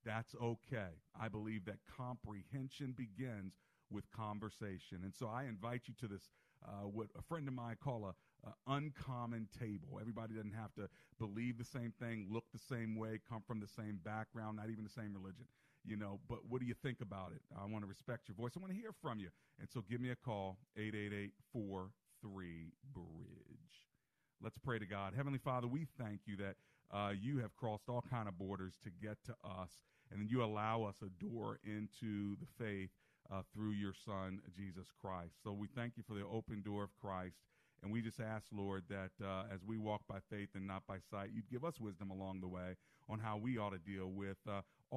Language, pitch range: English, 95-120 Hz